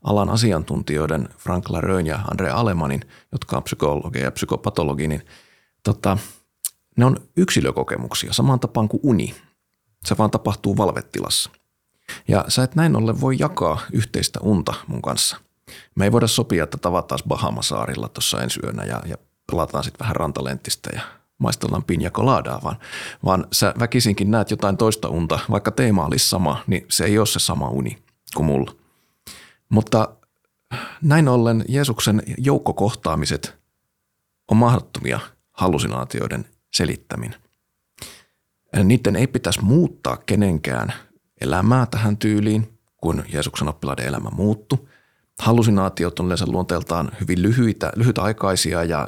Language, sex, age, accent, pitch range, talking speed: Finnish, male, 30-49, native, 85-115 Hz, 130 wpm